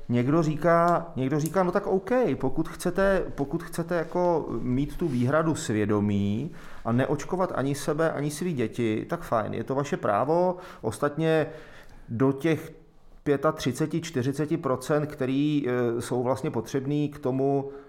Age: 30-49